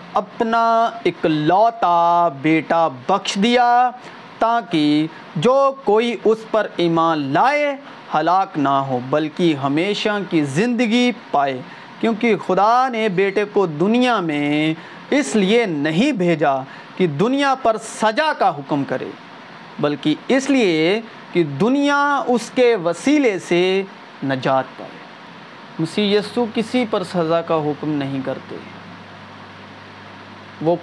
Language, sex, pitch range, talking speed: Urdu, male, 140-225 Hz, 115 wpm